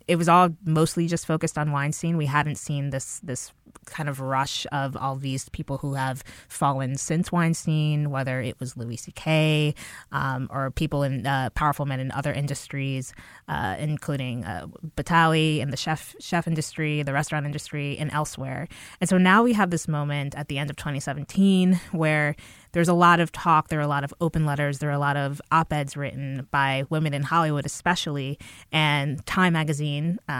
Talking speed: 190 wpm